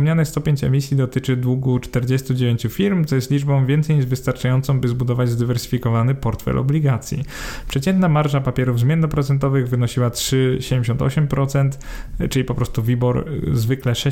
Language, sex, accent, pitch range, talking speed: Polish, male, native, 125-140 Hz, 125 wpm